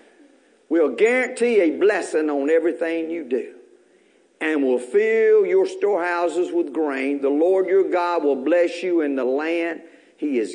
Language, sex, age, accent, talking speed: English, male, 50-69, American, 160 wpm